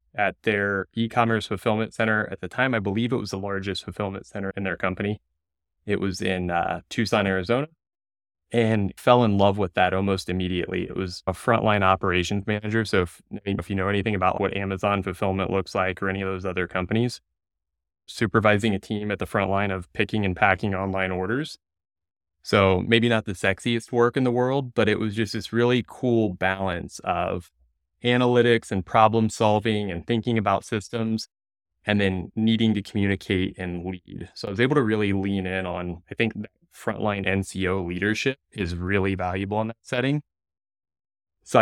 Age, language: 20-39, English